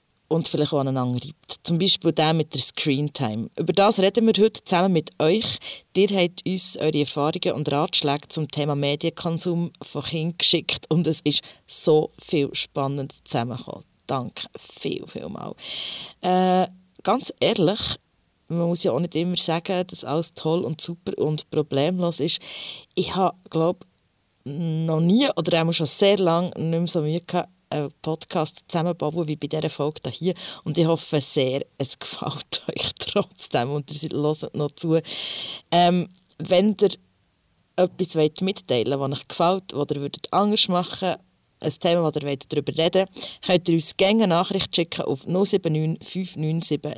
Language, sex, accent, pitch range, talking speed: German, female, Austrian, 145-180 Hz, 160 wpm